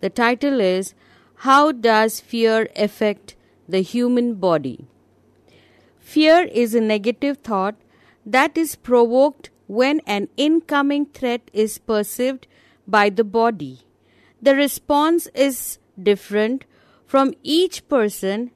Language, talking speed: English, 110 wpm